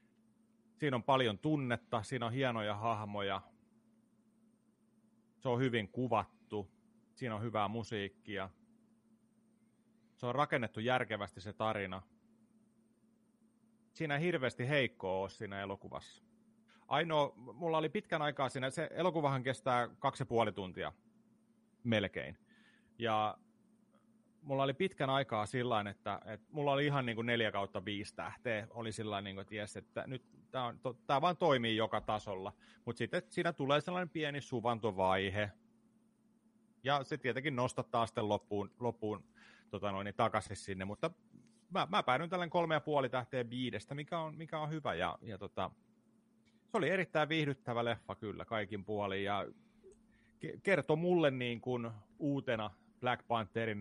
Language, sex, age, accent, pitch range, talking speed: Finnish, male, 30-49, native, 110-185 Hz, 140 wpm